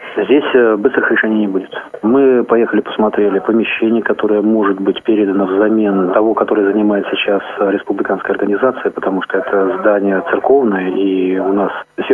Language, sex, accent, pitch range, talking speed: Russian, male, native, 95-110 Hz, 145 wpm